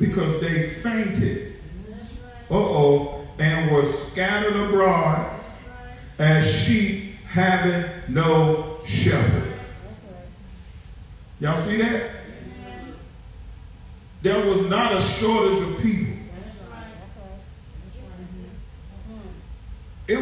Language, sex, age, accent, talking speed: English, male, 40-59, American, 75 wpm